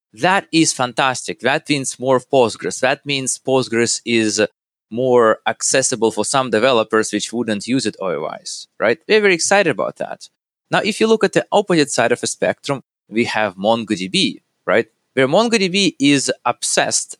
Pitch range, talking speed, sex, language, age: 100-130 Hz, 160 wpm, male, English, 20-39